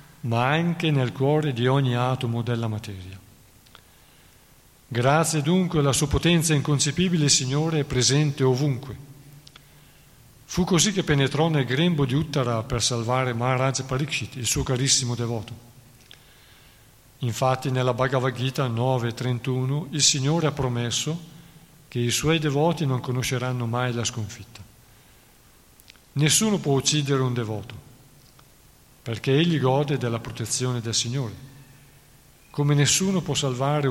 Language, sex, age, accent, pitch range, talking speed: Italian, male, 50-69, native, 125-150 Hz, 125 wpm